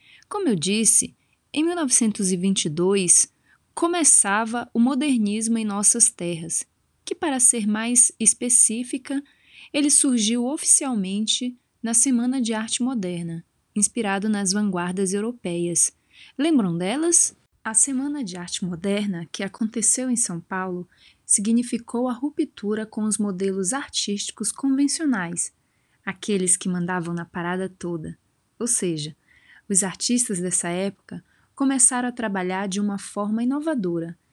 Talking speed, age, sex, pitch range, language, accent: 115 wpm, 20-39, female, 190-255 Hz, Portuguese, Brazilian